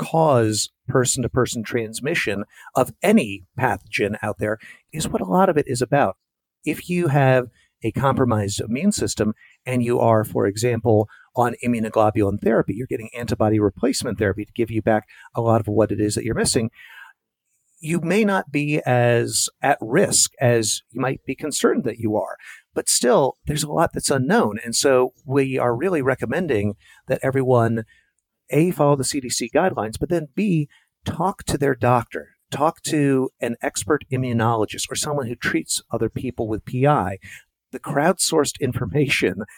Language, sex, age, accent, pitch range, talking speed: English, male, 50-69, American, 115-150 Hz, 160 wpm